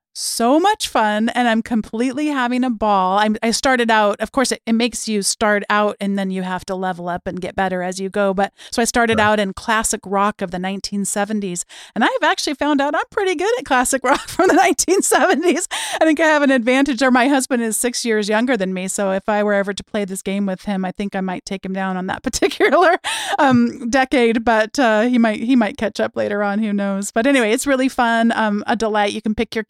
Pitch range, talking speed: 195-250 Hz, 245 wpm